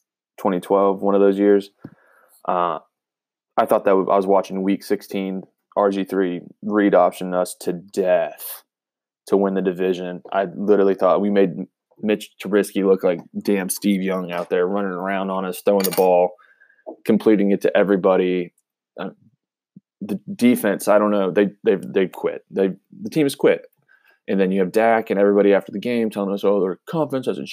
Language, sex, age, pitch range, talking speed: English, male, 20-39, 95-125 Hz, 175 wpm